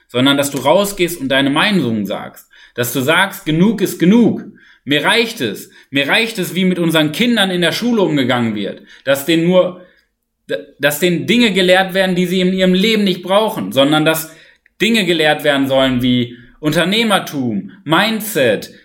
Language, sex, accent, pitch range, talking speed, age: German, male, German, 140-195 Hz, 170 wpm, 30-49